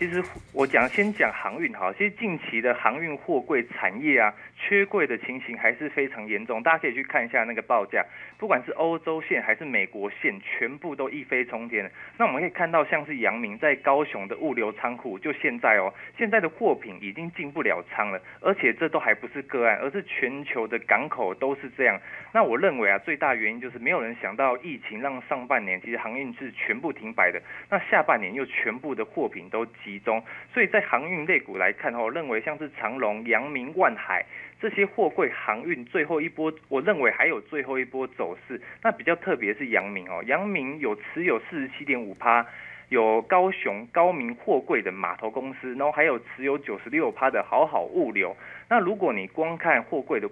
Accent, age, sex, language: native, 20-39, male, Chinese